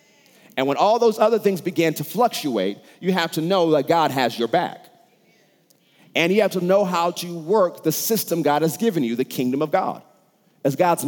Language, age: English, 40-59